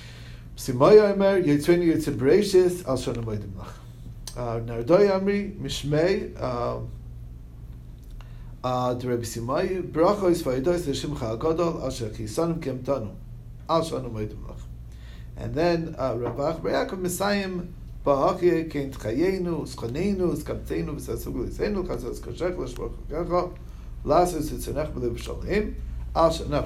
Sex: male